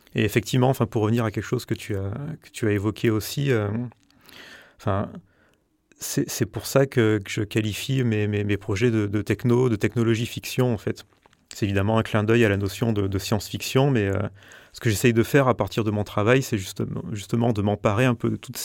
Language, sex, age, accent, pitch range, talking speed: French, male, 30-49, French, 105-120 Hz, 205 wpm